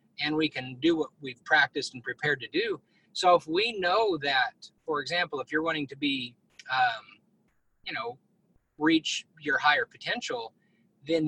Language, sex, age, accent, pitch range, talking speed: English, male, 20-39, American, 135-190 Hz, 165 wpm